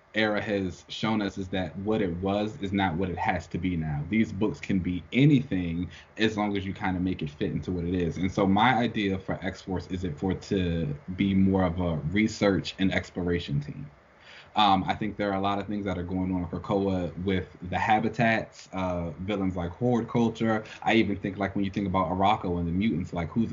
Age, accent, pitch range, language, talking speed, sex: 20-39, American, 90-105 Hz, English, 230 wpm, male